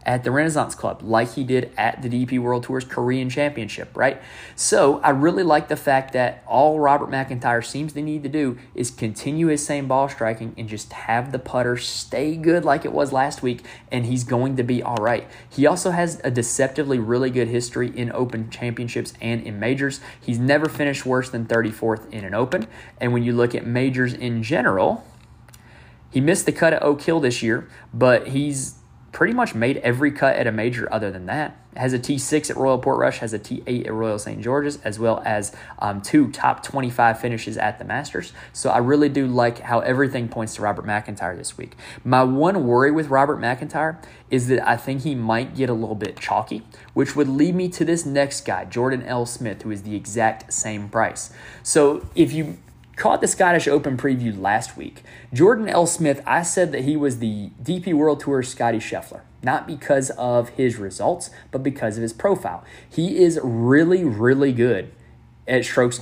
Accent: American